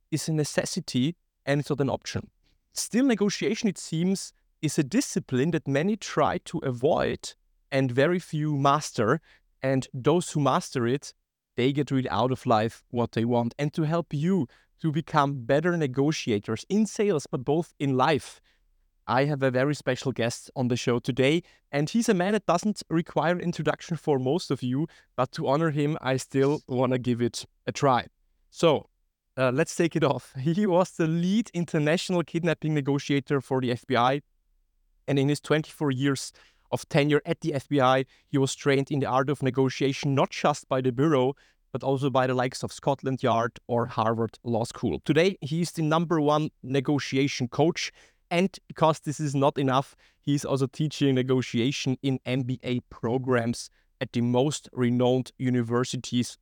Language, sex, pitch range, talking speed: German, male, 130-160 Hz, 175 wpm